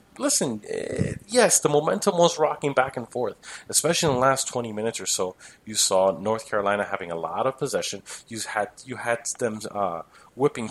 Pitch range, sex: 100-120 Hz, male